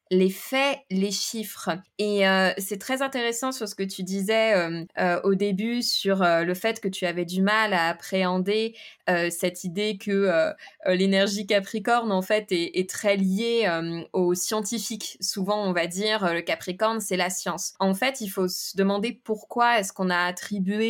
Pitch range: 185-225 Hz